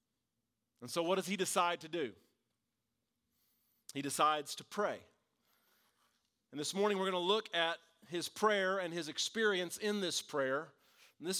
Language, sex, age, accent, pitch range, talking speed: English, male, 40-59, American, 145-195 Hz, 160 wpm